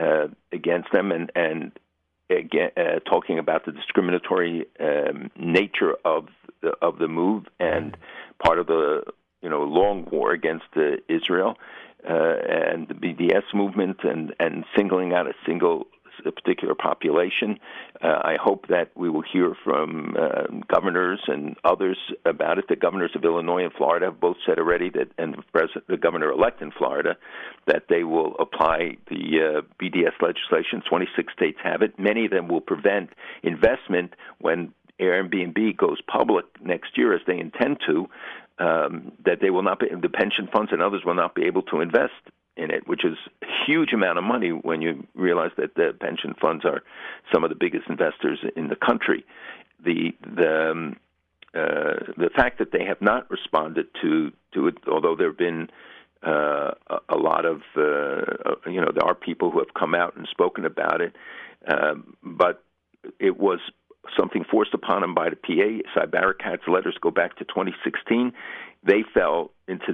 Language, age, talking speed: English, 60-79, 175 wpm